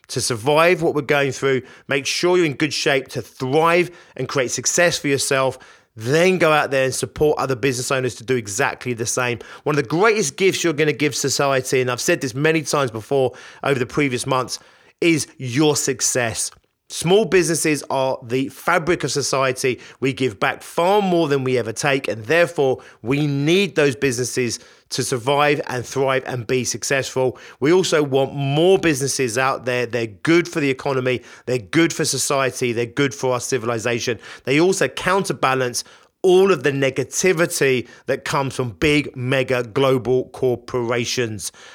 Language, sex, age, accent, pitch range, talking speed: English, male, 30-49, British, 125-155 Hz, 175 wpm